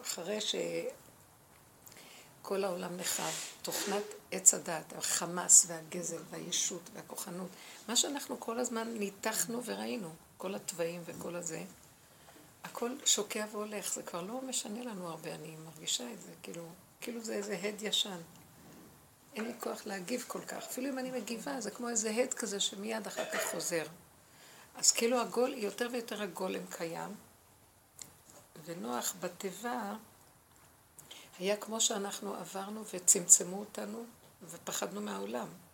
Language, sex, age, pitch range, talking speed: Hebrew, female, 60-79, 175-230 Hz, 130 wpm